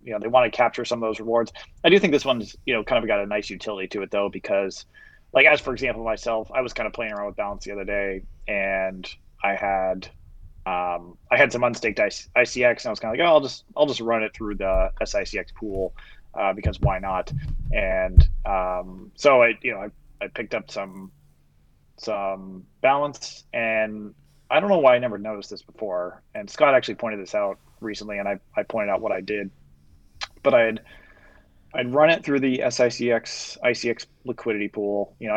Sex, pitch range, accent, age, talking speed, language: male, 95-120 Hz, American, 20-39, 210 wpm, English